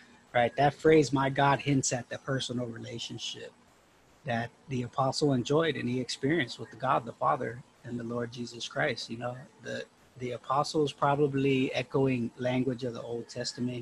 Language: English